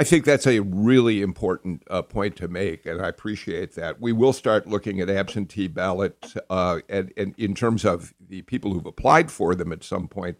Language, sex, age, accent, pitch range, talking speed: English, male, 50-69, American, 100-140 Hz, 210 wpm